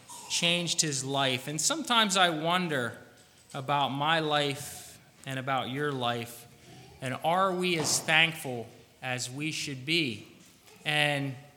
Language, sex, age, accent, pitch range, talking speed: English, male, 30-49, American, 155-220 Hz, 125 wpm